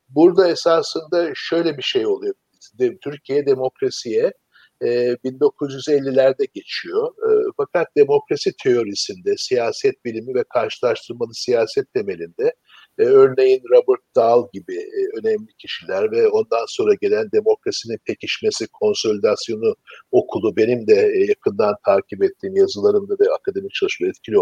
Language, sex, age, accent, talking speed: Turkish, male, 60-79, native, 105 wpm